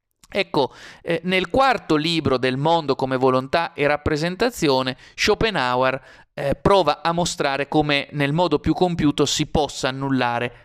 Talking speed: 135 wpm